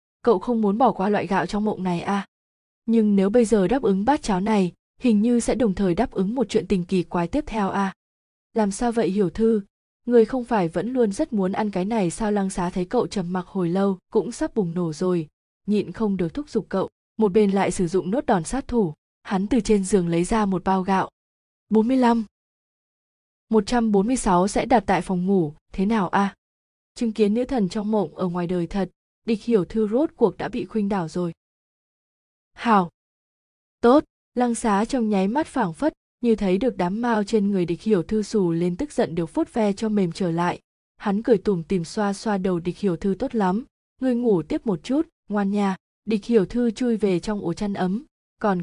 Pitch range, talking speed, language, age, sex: 185-230 Hz, 220 wpm, Vietnamese, 20-39, female